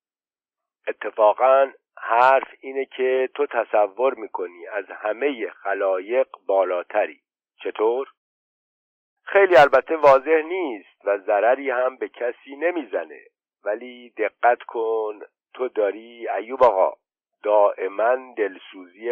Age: 50-69